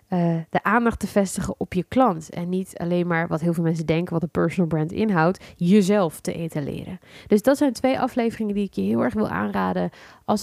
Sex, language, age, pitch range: female, Dutch, 20-39, 165-215 Hz